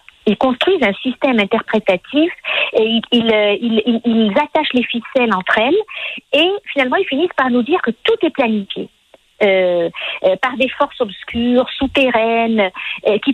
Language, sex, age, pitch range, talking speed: French, female, 50-69, 225-310 Hz, 150 wpm